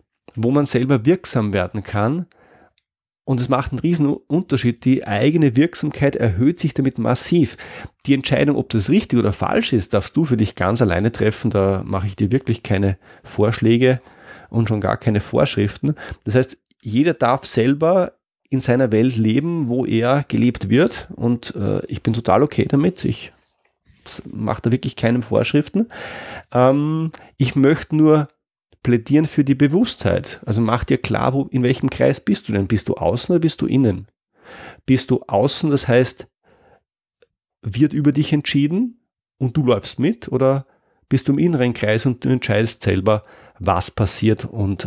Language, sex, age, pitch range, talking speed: German, male, 30-49, 110-145 Hz, 165 wpm